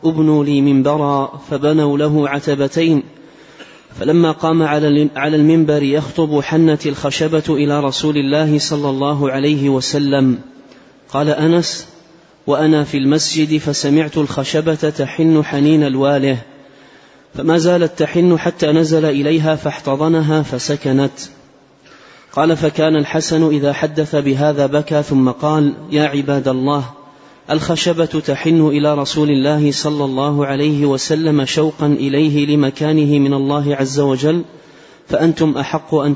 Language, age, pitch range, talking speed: Arabic, 30-49, 140-155 Hz, 115 wpm